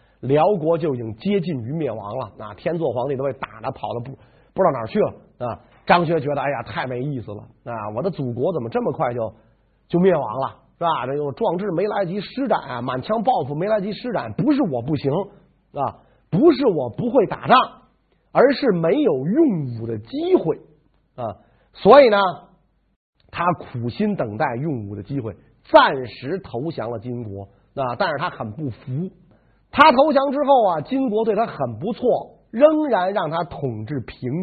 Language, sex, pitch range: Chinese, male, 130-215 Hz